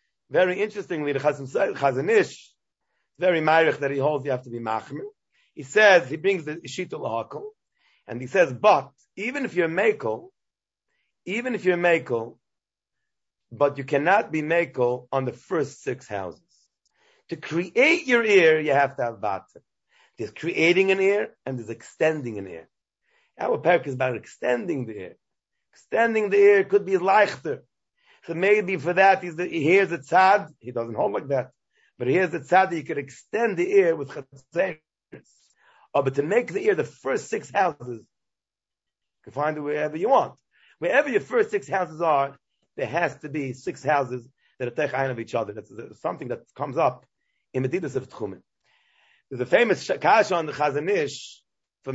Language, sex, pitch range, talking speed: English, male, 135-200 Hz, 175 wpm